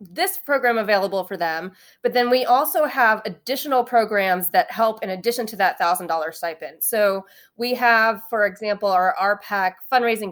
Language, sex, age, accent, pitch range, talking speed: English, female, 20-39, American, 185-235 Hz, 165 wpm